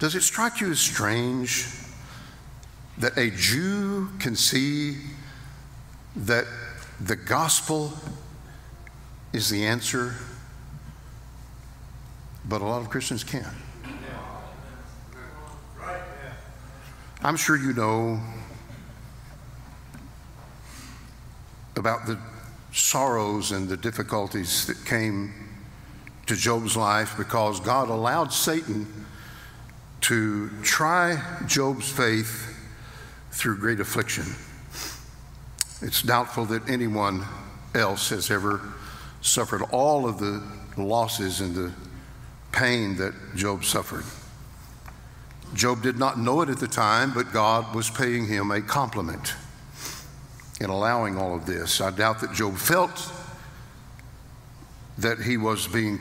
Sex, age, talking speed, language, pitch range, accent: male, 60-79, 105 wpm, English, 105-130 Hz, American